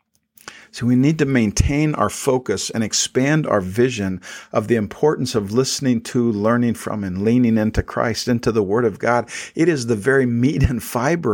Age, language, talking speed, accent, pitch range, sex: 50-69, English, 185 wpm, American, 110-140 Hz, male